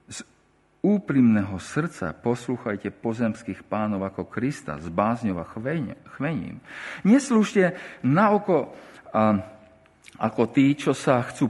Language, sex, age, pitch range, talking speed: Slovak, male, 50-69, 90-150 Hz, 105 wpm